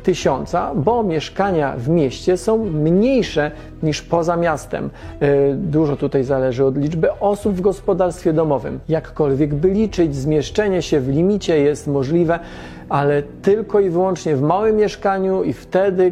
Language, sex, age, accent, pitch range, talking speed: Polish, male, 40-59, native, 145-190 Hz, 135 wpm